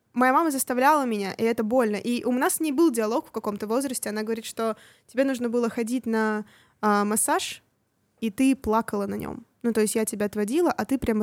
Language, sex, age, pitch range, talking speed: Russian, female, 20-39, 215-255 Hz, 220 wpm